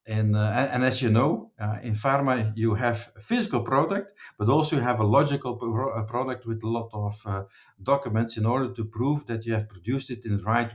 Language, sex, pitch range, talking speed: English, male, 110-140 Hz, 210 wpm